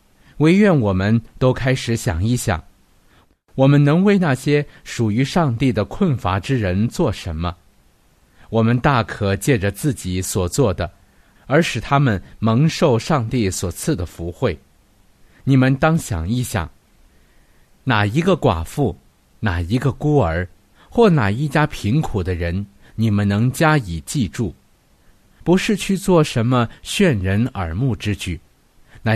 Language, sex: Chinese, male